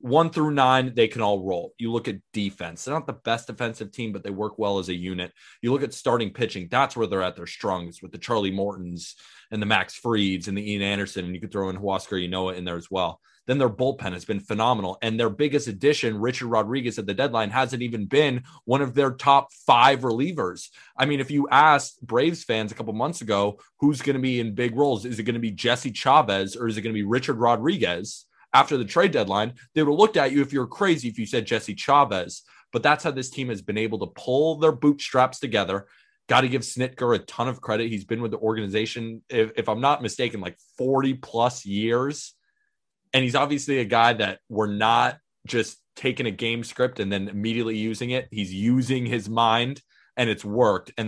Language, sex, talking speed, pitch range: English, male, 230 wpm, 105-130 Hz